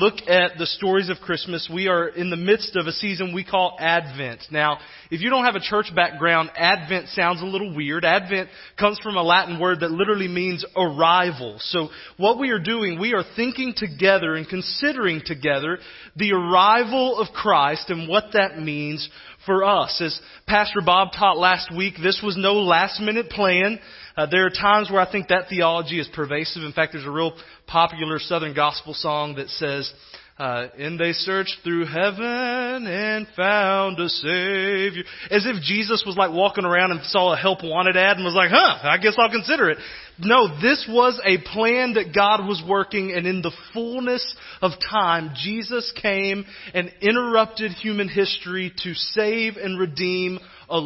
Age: 30-49